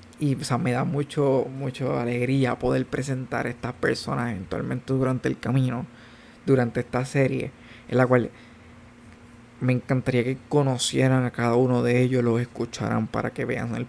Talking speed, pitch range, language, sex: 165 wpm, 120-140 Hz, Spanish, male